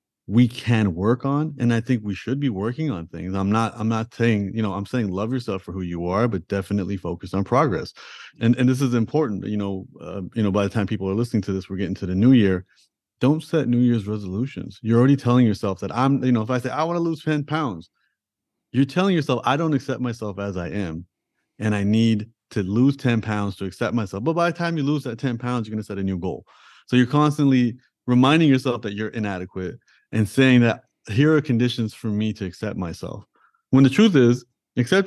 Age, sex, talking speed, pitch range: 30-49, male, 235 wpm, 105-130 Hz